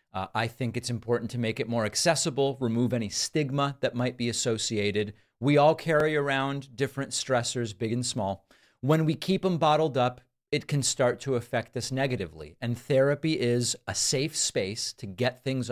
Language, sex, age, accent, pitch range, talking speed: English, male, 40-59, American, 115-140 Hz, 185 wpm